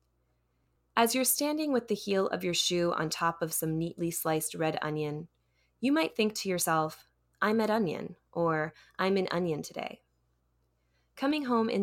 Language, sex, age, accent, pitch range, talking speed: English, female, 20-39, American, 140-190 Hz, 165 wpm